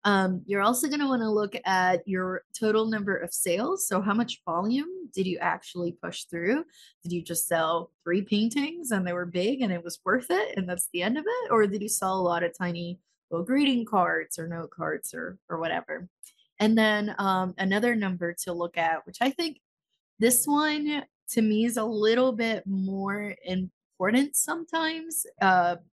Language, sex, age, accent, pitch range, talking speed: English, female, 20-39, American, 180-235 Hz, 195 wpm